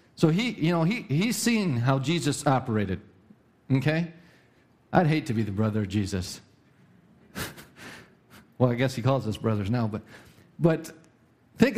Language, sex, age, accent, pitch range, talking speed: English, male, 50-69, American, 135-220 Hz, 155 wpm